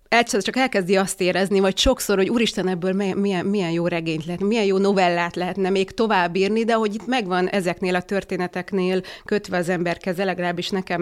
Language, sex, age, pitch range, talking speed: Hungarian, female, 30-49, 180-210 Hz, 180 wpm